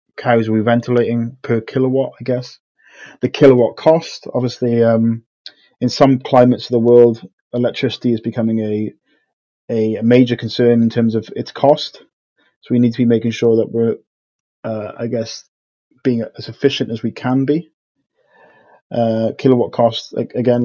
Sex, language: male, English